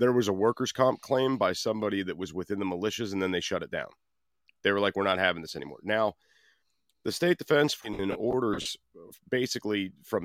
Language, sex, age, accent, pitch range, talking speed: English, male, 30-49, American, 100-120 Hz, 205 wpm